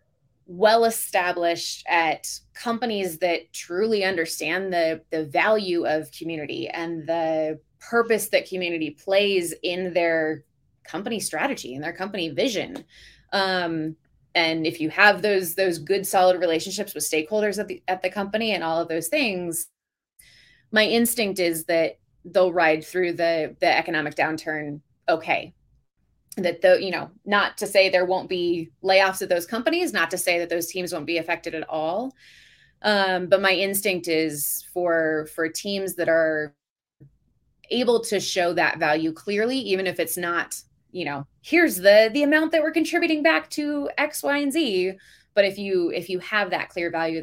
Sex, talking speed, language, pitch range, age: female, 165 wpm, English, 165-200 Hz, 20-39